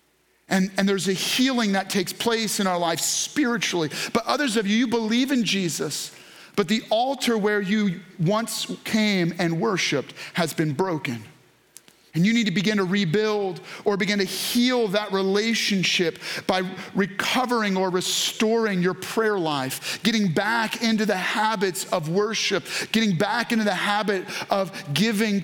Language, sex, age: English, male, 40-59